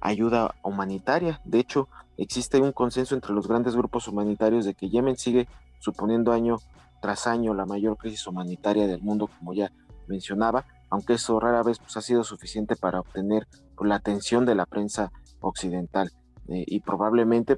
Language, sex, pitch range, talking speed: Spanish, male, 95-115 Hz, 160 wpm